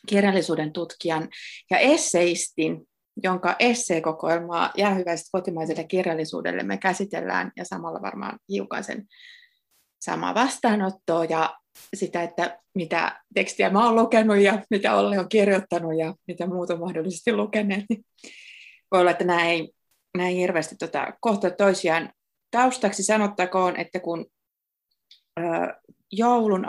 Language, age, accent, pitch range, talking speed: Finnish, 30-49, native, 170-210 Hz, 110 wpm